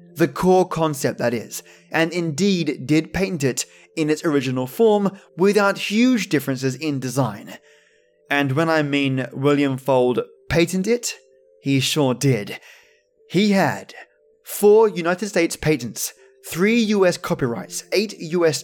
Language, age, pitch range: English, 20-39, 135-180 Hz